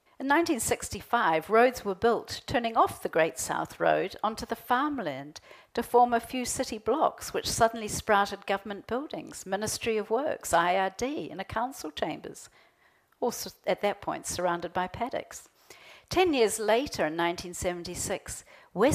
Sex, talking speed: female, 145 wpm